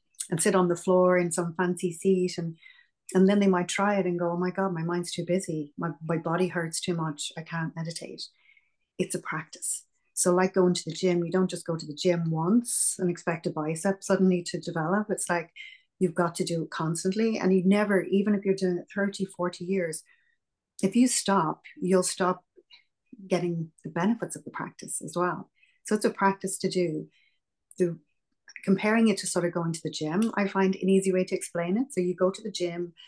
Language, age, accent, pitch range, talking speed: English, 30-49, Irish, 170-195 Hz, 220 wpm